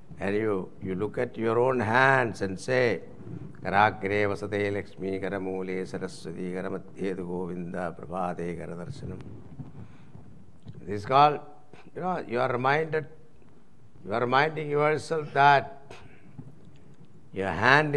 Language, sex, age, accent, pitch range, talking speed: English, male, 60-79, Indian, 95-120 Hz, 105 wpm